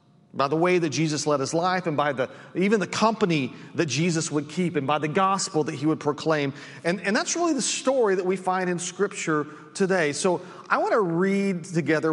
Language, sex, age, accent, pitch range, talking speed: English, male, 40-59, American, 120-165 Hz, 220 wpm